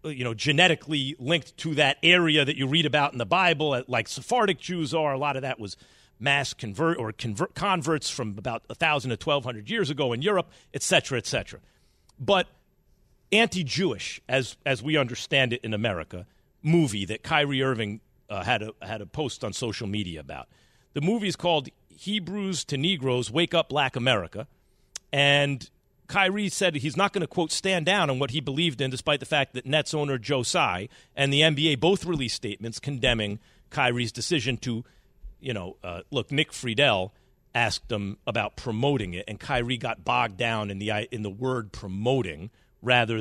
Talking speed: 180 wpm